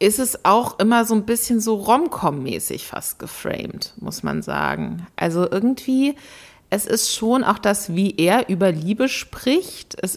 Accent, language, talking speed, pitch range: German, German, 160 wpm, 160-215 Hz